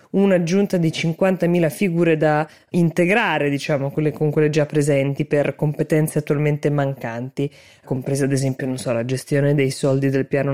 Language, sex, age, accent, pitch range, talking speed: Italian, female, 20-39, native, 140-170 Hz, 160 wpm